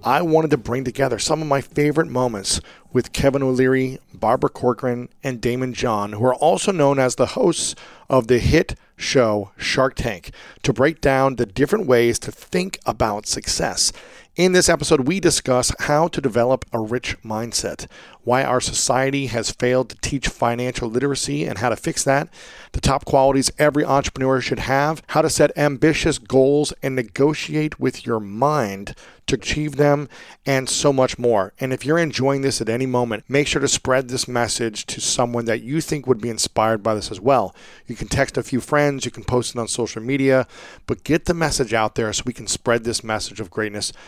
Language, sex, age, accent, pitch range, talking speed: English, male, 40-59, American, 115-140 Hz, 195 wpm